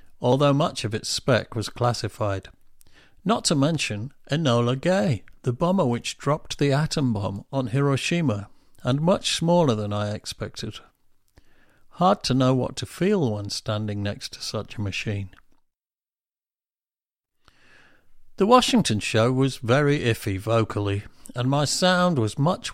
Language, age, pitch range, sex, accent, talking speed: English, 50-69, 105-135 Hz, male, British, 135 wpm